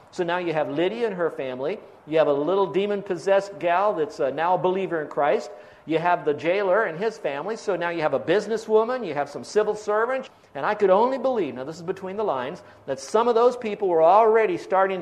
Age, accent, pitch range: 50-69, American, 155-220 Hz